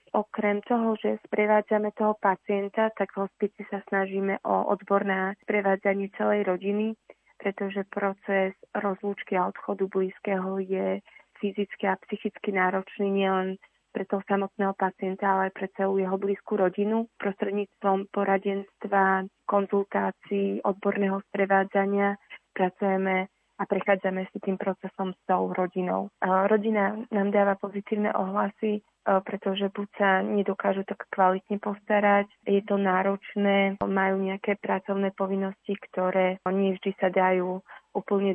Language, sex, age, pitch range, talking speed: Slovak, female, 20-39, 190-205 Hz, 125 wpm